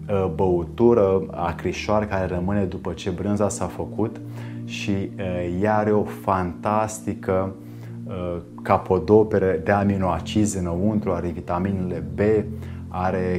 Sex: male